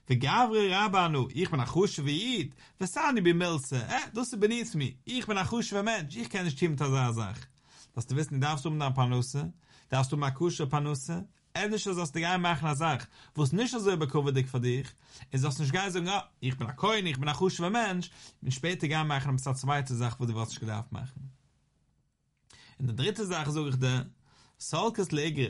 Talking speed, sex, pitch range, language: 40 wpm, male, 130-180 Hz, English